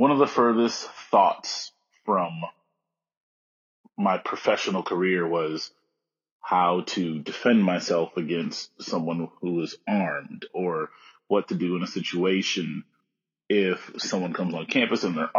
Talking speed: 130 wpm